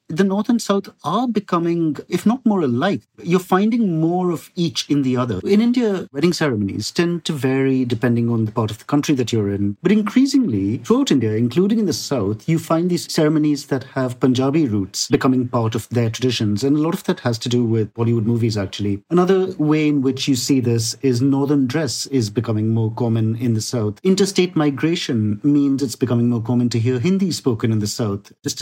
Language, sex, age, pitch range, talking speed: English, male, 50-69, 120-160 Hz, 210 wpm